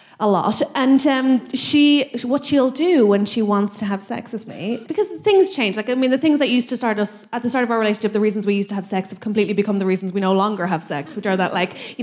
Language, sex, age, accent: English, female, 20-39, Irish